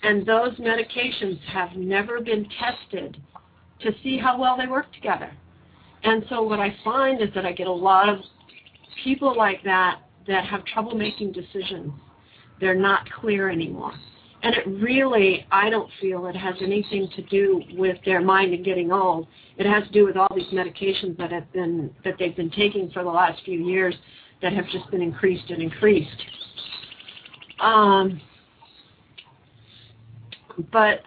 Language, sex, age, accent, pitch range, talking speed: English, female, 50-69, American, 180-215 Hz, 155 wpm